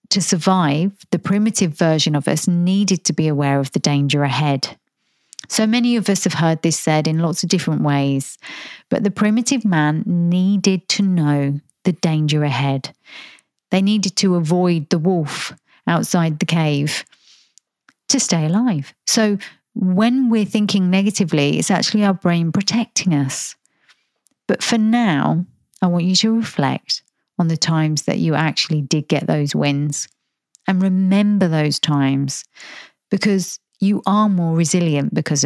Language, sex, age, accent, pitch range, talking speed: English, female, 40-59, British, 155-195 Hz, 150 wpm